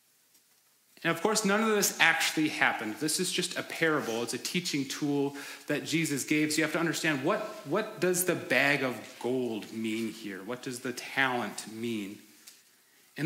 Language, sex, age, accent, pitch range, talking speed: English, male, 30-49, American, 135-175 Hz, 180 wpm